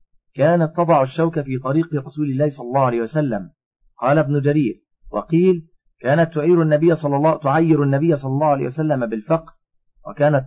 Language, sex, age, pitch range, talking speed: Arabic, male, 40-59, 120-160 Hz, 160 wpm